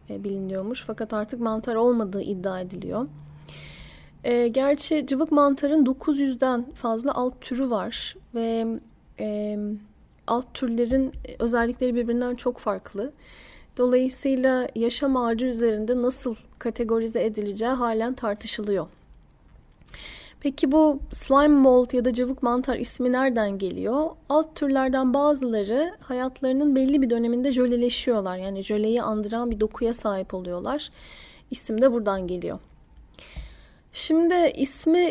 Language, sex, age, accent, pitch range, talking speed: Turkish, female, 10-29, native, 225-270 Hz, 110 wpm